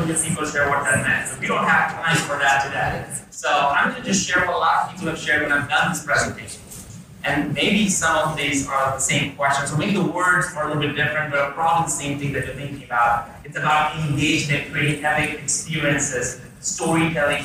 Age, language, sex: 30-49, English, male